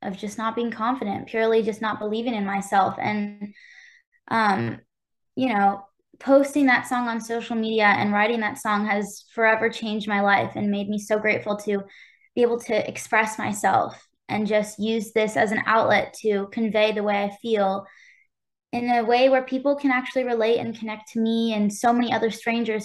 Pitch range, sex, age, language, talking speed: 210-245 Hz, female, 10-29, English, 185 wpm